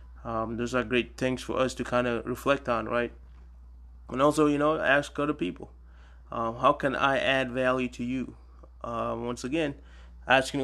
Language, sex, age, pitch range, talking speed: English, male, 20-39, 105-135 Hz, 180 wpm